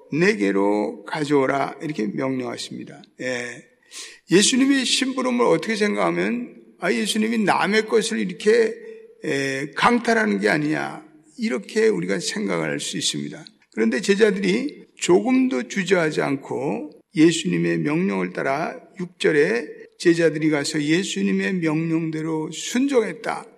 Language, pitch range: Korean, 160-230 Hz